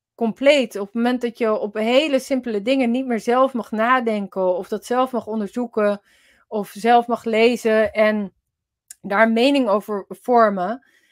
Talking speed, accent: 155 wpm, Dutch